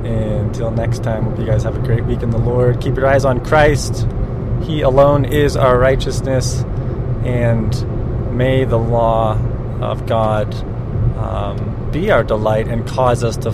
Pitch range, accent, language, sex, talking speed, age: 115-130 Hz, American, English, male, 165 wpm, 30-49